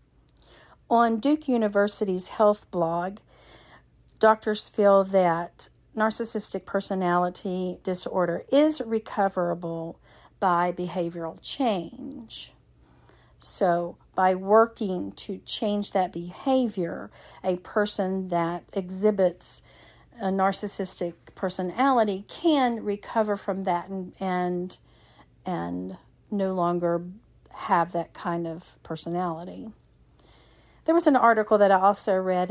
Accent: American